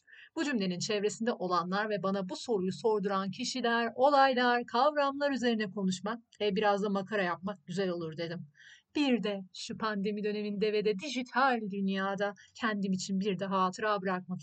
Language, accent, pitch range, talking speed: Turkish, native, 185-240 Hz, 155 wpm